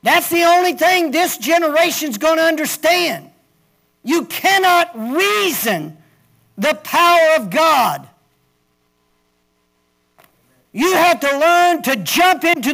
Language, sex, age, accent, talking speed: English, male, 50-69, American, 115 wpm